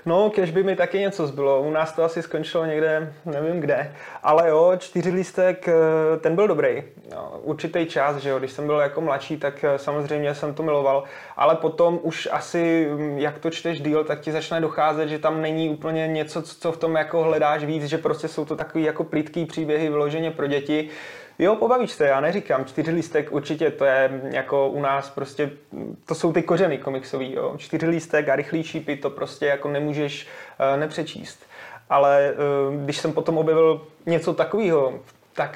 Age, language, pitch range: 20-39, Czech, 145-165 Hz